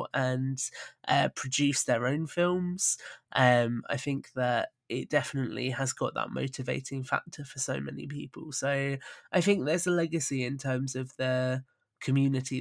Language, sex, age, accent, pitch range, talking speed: English, male, 20-39, British, 130-165 Hz, 150 wpm